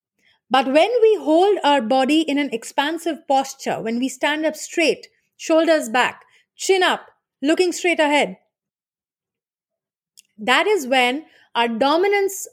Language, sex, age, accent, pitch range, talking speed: English, female, 30-49, Indian, 235-320 Hz, 130 wpm